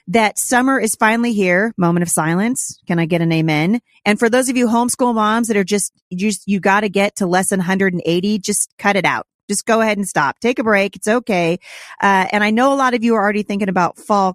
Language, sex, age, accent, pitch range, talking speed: English, female, 40-59, American, 185-230 Hz, 245 wpm